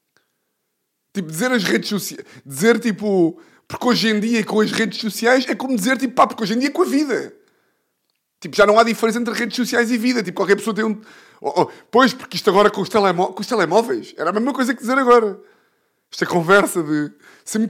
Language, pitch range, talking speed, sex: Portuguese, 165-225 Hz, 225 wpm, male